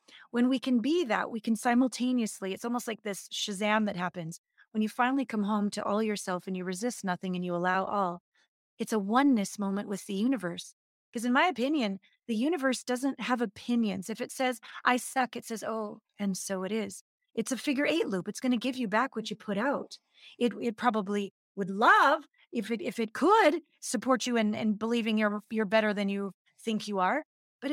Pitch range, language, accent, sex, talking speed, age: 205-260 Hz, English, American, female, 210 wpm, 30-49